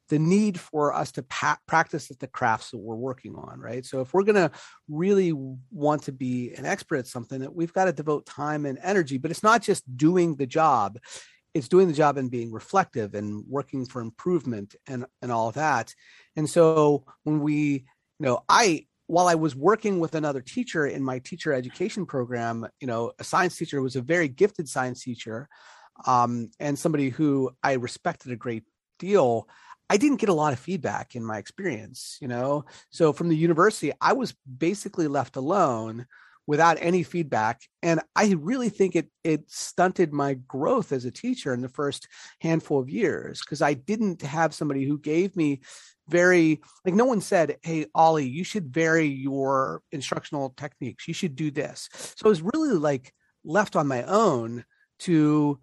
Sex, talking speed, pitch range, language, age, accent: male, 190 wpm, 130-175 Hz, English, 40-59, American